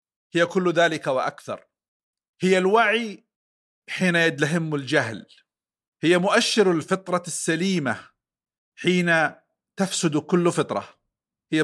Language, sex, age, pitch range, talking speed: Arabic, male, 50-69, 140-190 Hz, 95 wpm